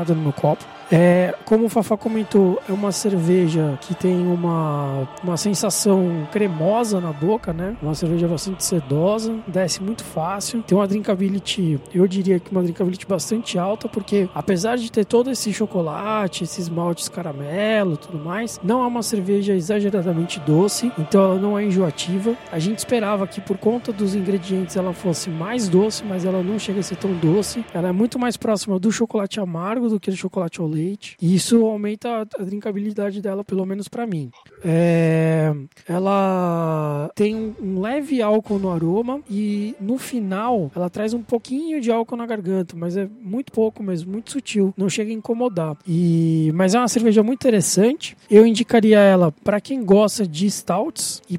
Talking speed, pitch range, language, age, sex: 175 wpm, 180-220 Hz, Portuguese, 20-39, male